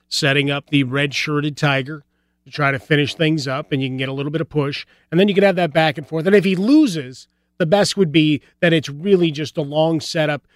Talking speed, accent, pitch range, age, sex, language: 250 wpm, American, 135-165 Hz, 30-49, male, English